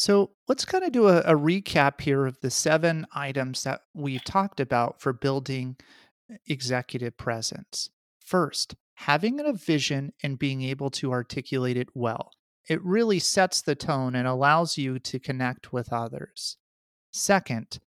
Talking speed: 150 wpm